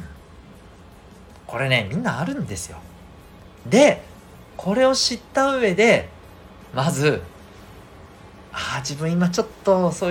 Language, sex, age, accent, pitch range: Japanese, male, 40-59, native, 90-135 Hz